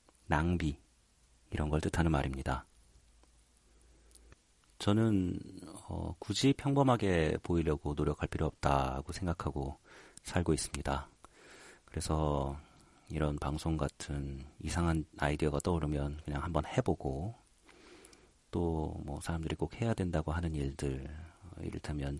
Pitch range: 70-95 Hz